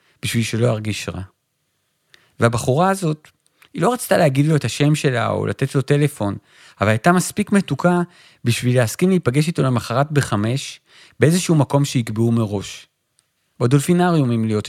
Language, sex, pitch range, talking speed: Hebrew, male, 115-155 Hz, 145 wpm